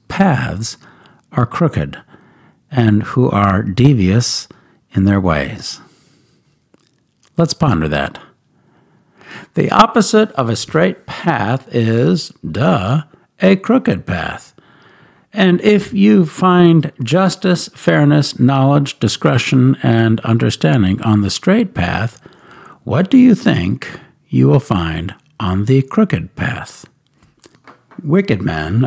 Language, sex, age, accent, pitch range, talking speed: English, male, 60-79, American, 110-165 Hz, 105 wpm